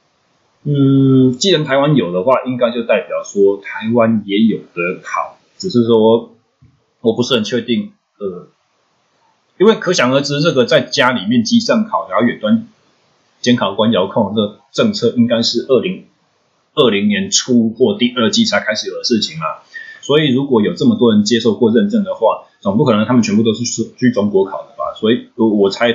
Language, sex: Chinese, male